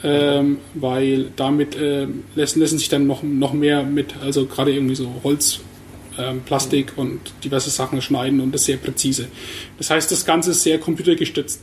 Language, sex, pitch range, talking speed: German, male, 140-175 Hz, 175 wpm